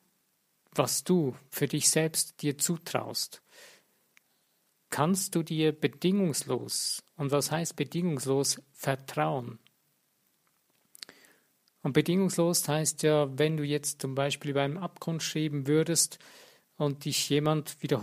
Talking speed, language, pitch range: 110 wpm, German, 140-165 Hz